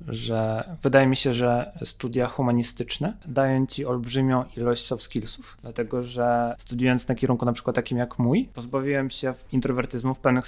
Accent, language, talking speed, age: native, Polish, 160 wpm, 20-39